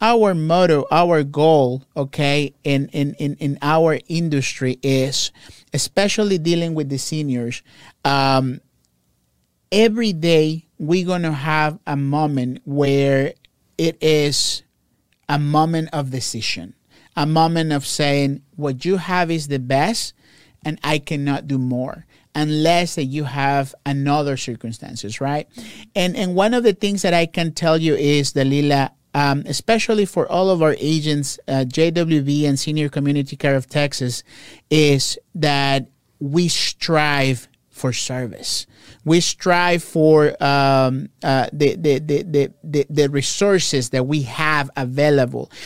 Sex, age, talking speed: male, 50-69, 135 wpm